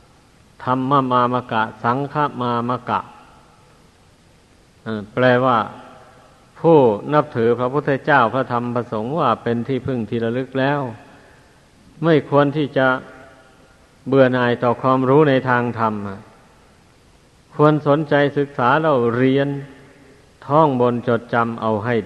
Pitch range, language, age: 120-140 Hz, Thai, 50-69